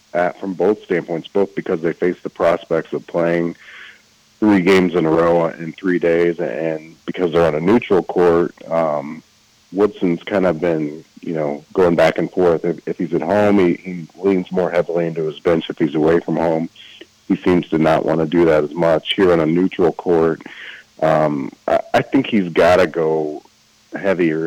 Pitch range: 80-90 Hz